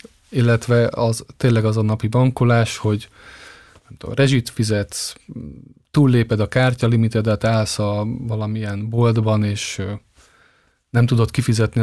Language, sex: Hungarian, male